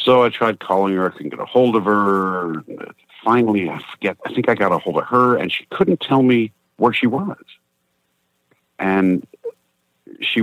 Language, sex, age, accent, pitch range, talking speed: English, male, 50-69, American, 70-105 Hz, 190 wpm